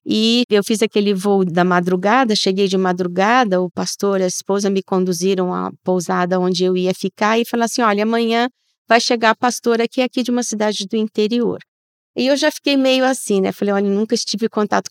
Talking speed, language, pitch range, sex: 215 wpm, Portuguese, 185-255 Hz, female